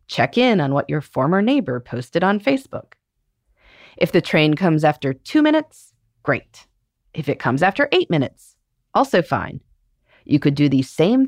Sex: female